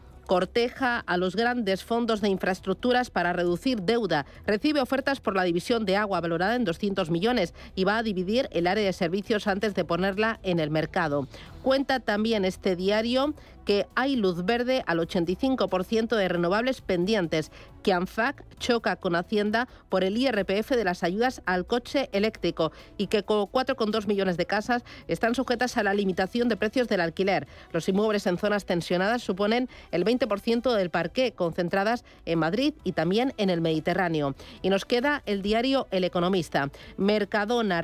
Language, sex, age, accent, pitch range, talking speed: Spanish, female, 40-59, Spanish, 180-230 Hz, 165 wpm